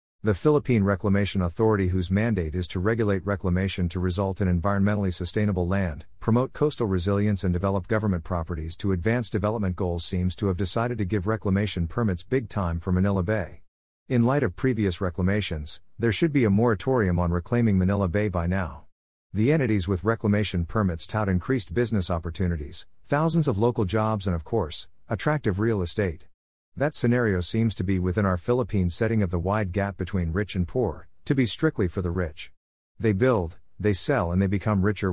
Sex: male